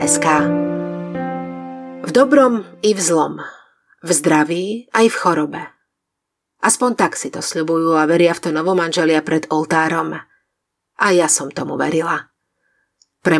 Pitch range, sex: 155-210 Hz, female